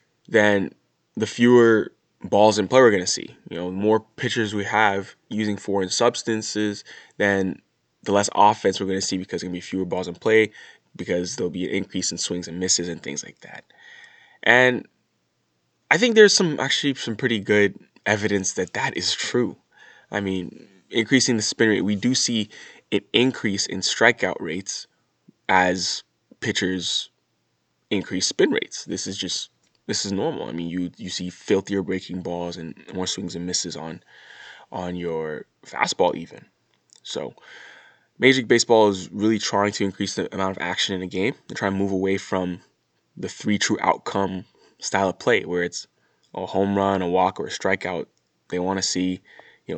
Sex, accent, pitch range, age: male, American, 90-105 Hz, 20-39